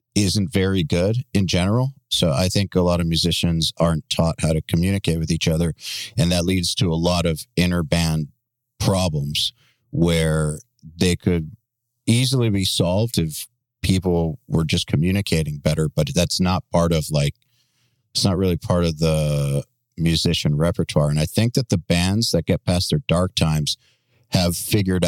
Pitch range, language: 80-110 Hz, English